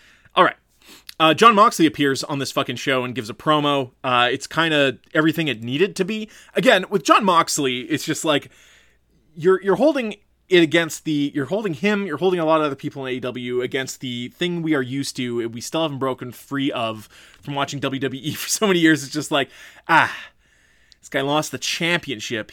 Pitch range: 125-160 Hz